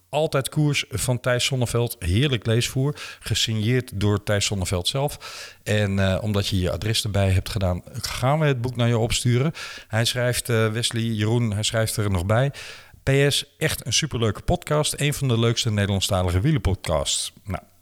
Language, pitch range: Dutch, 100-135 Hz